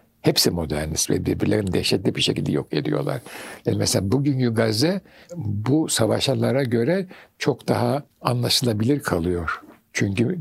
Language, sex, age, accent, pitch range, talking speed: Turkish, male, 60-79, native, 95-150 Hz, 120 wpm